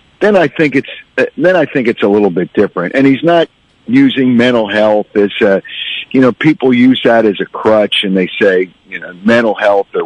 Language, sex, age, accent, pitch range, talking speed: English, male, 50-69, American, 105-140 Hz, 215 wpm